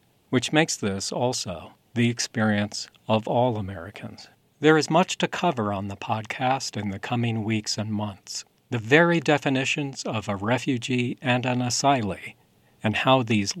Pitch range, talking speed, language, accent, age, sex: 110-135 Hz, 155 wpm, English, American, 50-69, male